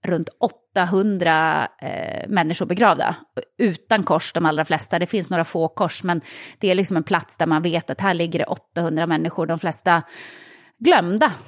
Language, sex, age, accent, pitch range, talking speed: English, female, 30-49, Swedish, 180-260 Hz, 175 wpm